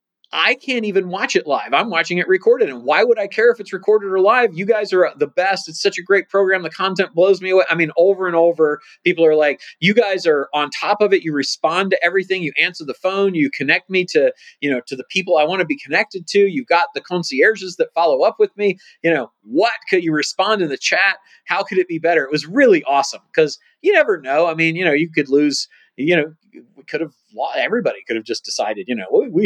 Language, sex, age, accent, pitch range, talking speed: English, male, 30-49, American, 150-230 Hz, 255 wpm